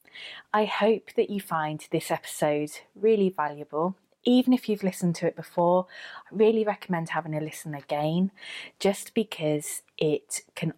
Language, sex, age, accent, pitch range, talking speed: English, female, 20-39, British, 150-195 Hz, 150 wpm